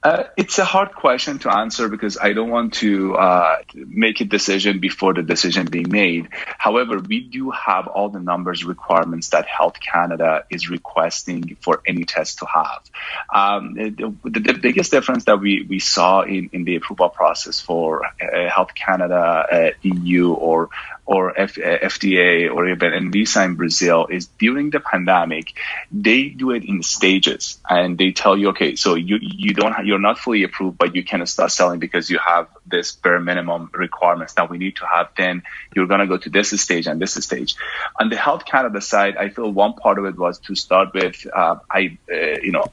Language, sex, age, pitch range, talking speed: English, male, 30-49, 90-105 Hz, 200 wpm